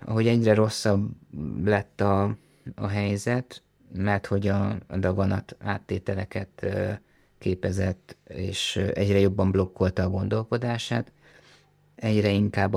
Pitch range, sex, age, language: 95-105 Hz, male, 20-39, Hungarian